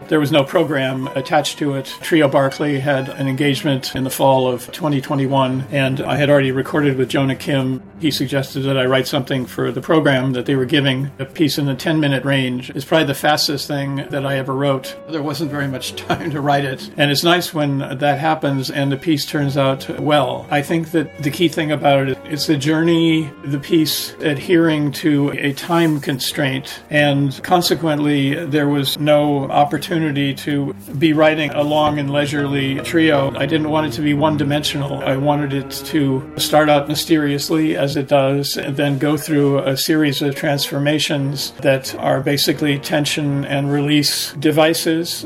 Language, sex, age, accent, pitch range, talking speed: English, male, 50-69, American, 140-155 Hz, 180 wpm